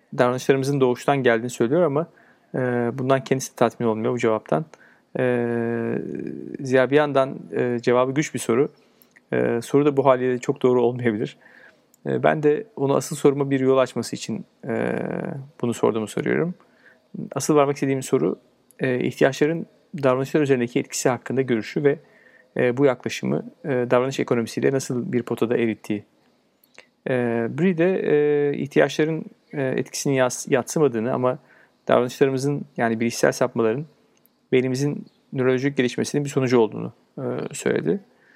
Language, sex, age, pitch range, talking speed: Turkish, male, 40-59, 125-150 Hz, 115 wpm